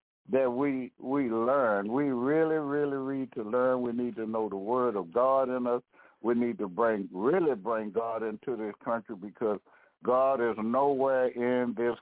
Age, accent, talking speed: 60-79, American, 180 wpm